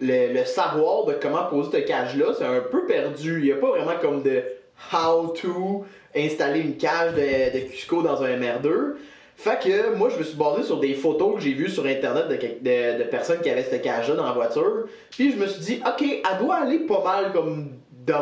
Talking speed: 235 wpm